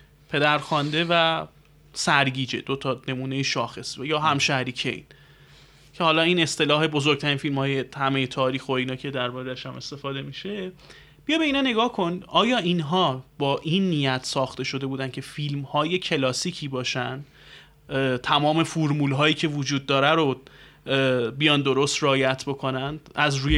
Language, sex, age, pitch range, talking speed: Persian, male, 30-49, 135-165 Hz, 145 wpm